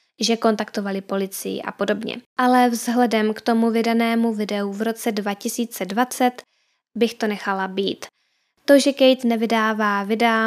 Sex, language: female, Czech